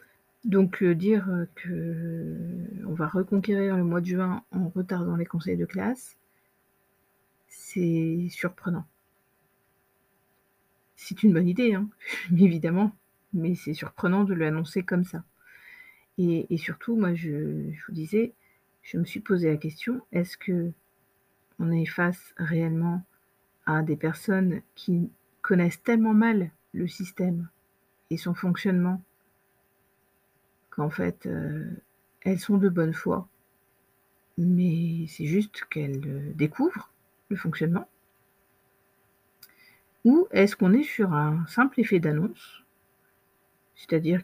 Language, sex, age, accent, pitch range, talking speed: French, female, 50-69, French, 165-195 Hz, 120 wpm